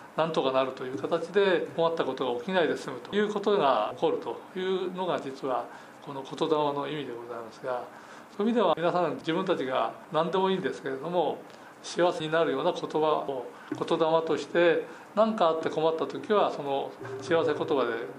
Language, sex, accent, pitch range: Japanese, male, native, 145-190 Hz